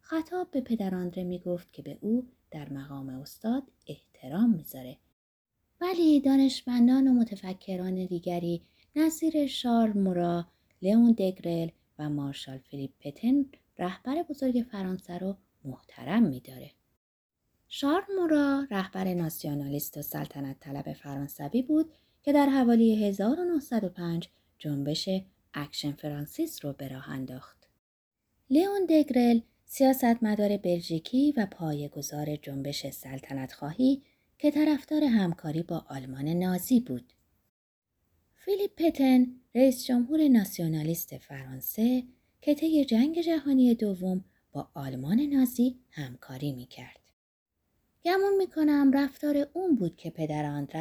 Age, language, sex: 30-49, Persian, female